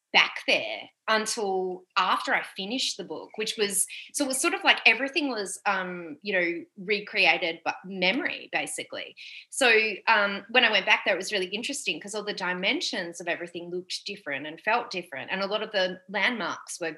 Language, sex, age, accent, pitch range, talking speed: English, female, 30-49, Australian, 175-230 Hz, 190 wpm